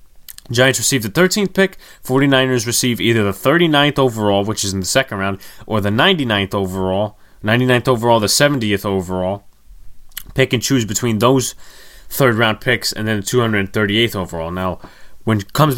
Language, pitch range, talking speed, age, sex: English, 105-135 Hz, 165 wpm, 20-39, male